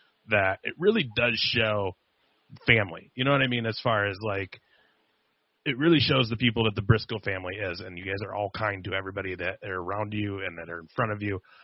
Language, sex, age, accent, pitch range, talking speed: English, male, 30-49, American, 100-130 Hz, 225 wpm